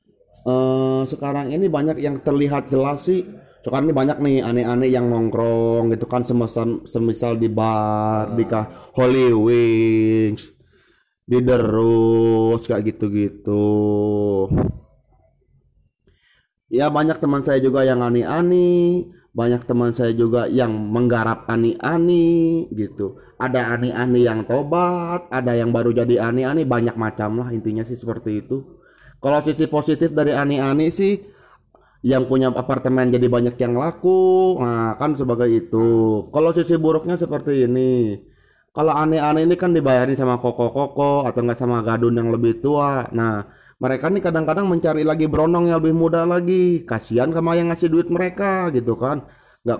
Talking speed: 140 wpm